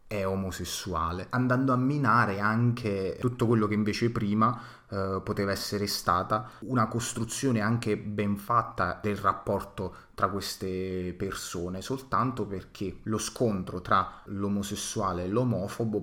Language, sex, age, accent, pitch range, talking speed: Italian, male, 30-49, native, 95-110 Hz, 125 wpm